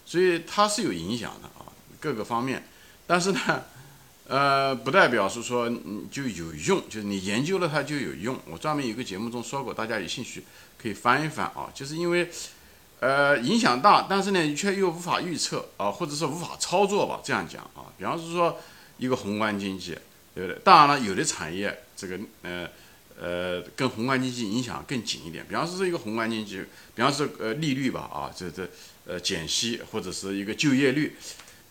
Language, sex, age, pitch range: Chinese, male, 50-69, 105-175 Hz